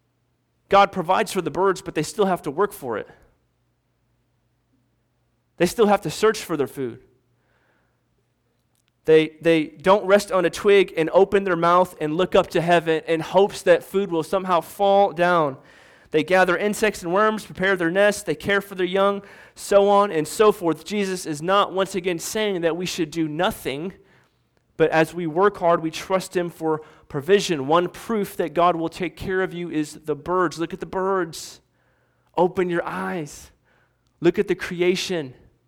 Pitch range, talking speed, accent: 155-195 Hz, 180 wpm, American